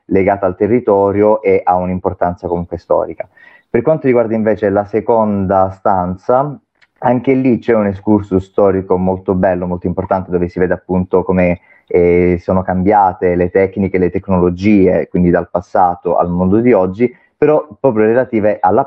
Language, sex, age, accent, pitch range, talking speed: Italian, male, 30-49, native, 90-100 Hz, 155 wpm